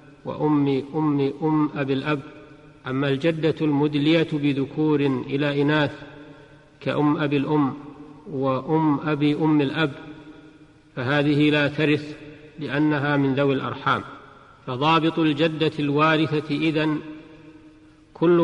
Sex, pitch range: male, 140-155 Hz